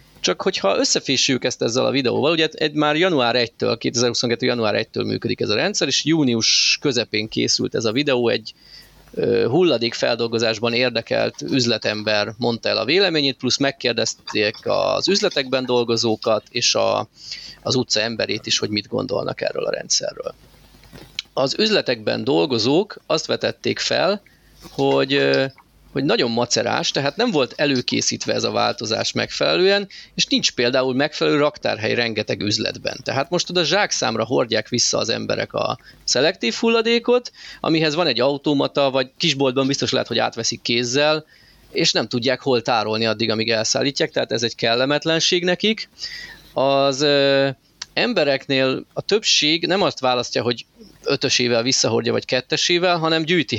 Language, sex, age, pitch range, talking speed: Hungarian, male, 30-49, 120-160 Hz, 140 wpm